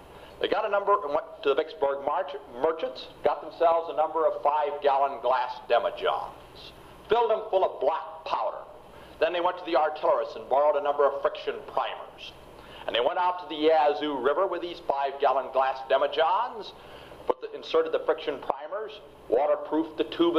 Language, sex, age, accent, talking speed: English, male, 60-79, American, 180 wpm